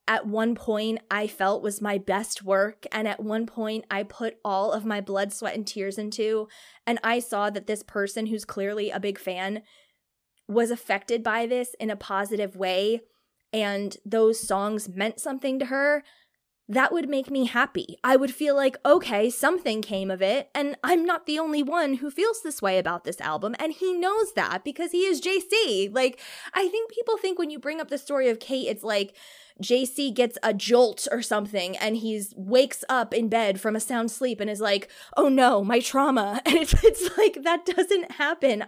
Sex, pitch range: female, 215-325 Hz